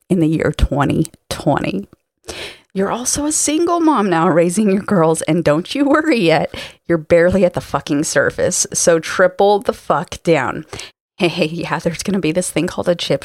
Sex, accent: female, American